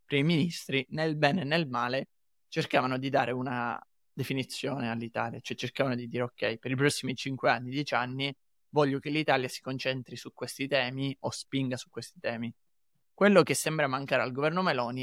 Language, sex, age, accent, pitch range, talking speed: Italian, male, 20-39, native, 125-145 Hz, 180 wpm